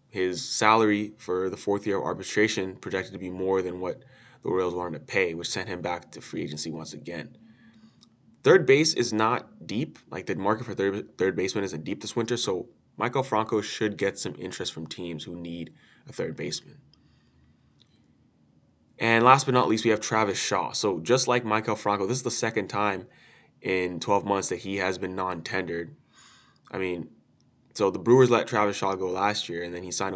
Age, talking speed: 20-39, 200 wpm